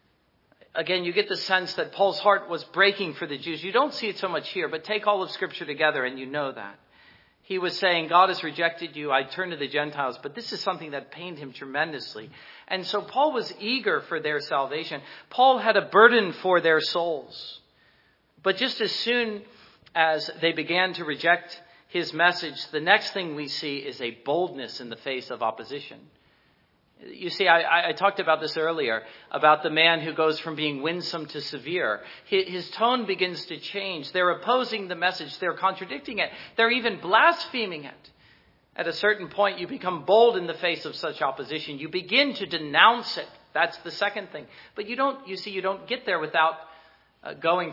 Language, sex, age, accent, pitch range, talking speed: English, male, 40-59, American, 155-195 Hz, 195 wpm